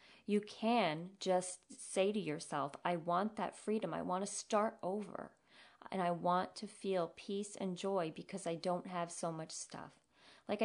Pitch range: 170-205 Hz